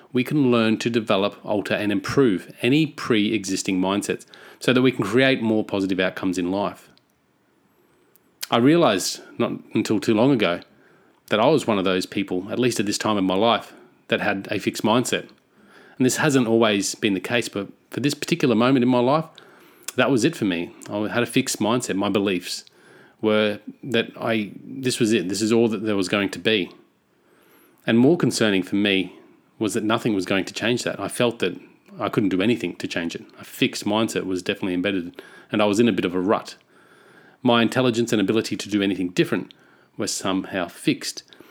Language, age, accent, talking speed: English, 30-49, Australian, 200 wpm